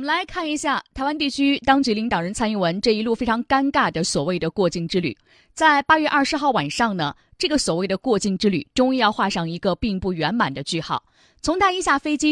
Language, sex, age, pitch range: Chinese, female, 20-39, 185-275 Hz